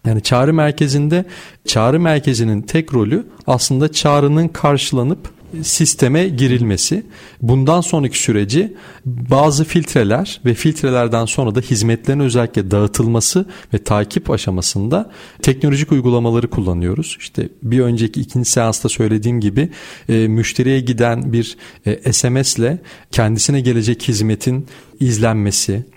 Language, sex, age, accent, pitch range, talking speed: Turkish, male, 40-59, native, 115-145 Hz, 105 wpm